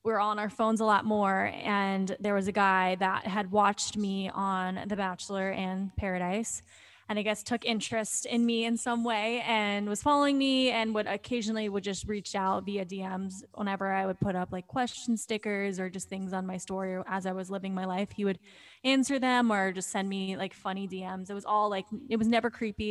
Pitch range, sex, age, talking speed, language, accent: 190-225 Hz, female, 20-39, 215 wpm, English, American